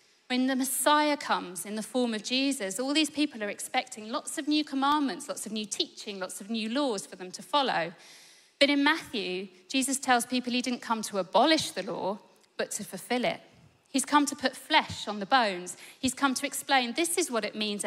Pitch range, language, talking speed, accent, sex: 205-275 Hz, English, 215 wpm, British, female